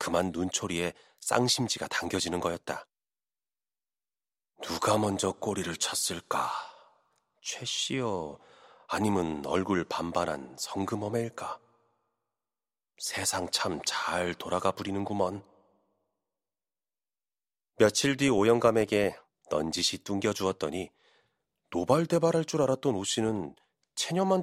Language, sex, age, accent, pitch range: Korean, male, 30-49, native, 95-125 Hz